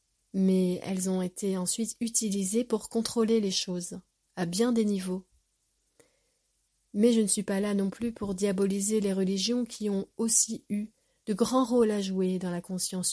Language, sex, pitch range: French, female, 190-230 Hz